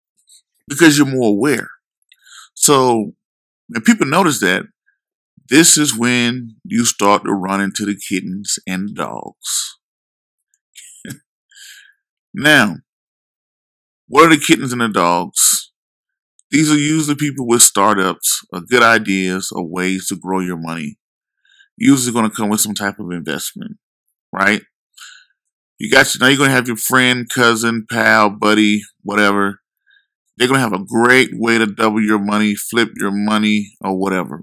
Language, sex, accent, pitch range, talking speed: English, male, American, 105-150 Hz, 145 wpm